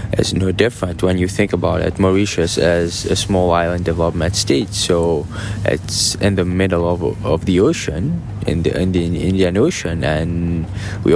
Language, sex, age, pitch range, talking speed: English, male, 20-39, 90-105 Hz, 165 wpm